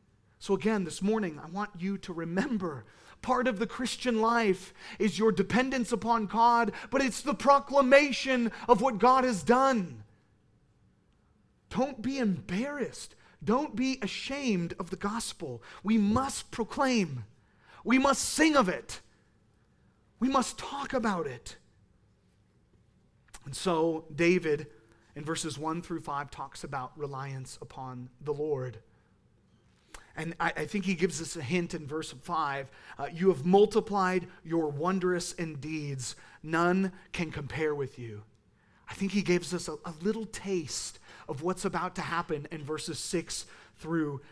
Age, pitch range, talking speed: 30-49, 145-215 Hz, 145 wpm